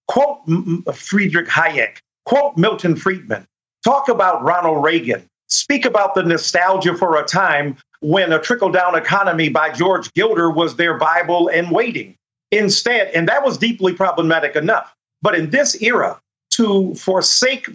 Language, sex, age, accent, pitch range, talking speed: English, male, 50-69, American, 180-230 Hz, 140 wpm